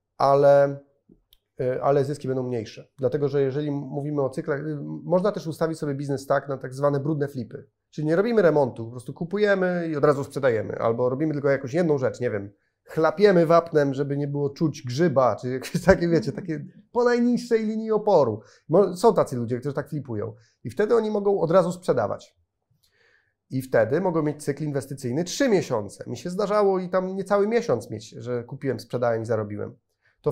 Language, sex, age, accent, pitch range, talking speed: Polish, male, 30-49, native, 125-160 Hz, 185 wpm